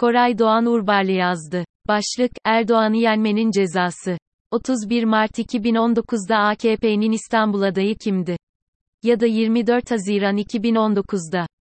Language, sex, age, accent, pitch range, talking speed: Turkish, female, 30-49, native, 190-225 Hz, 105 wpm